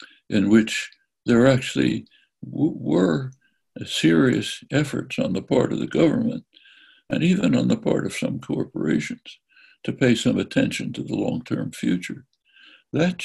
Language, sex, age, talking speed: English, male, 60-79, 135 wpm